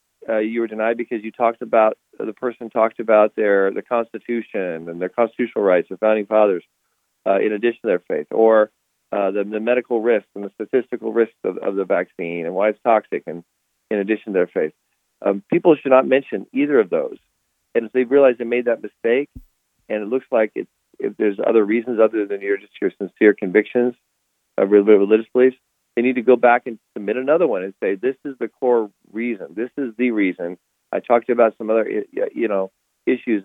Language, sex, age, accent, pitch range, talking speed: English, male, 40-59, American, 105-125 Hz, 210 wpm